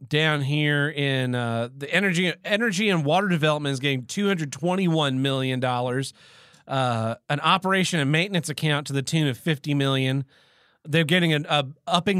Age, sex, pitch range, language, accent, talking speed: 30-49, male, 140-175 Hz, English, American, 165 wpm